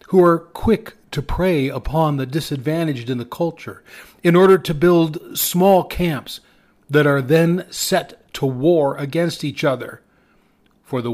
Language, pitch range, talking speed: English, 135-185 Hz, 150 wpm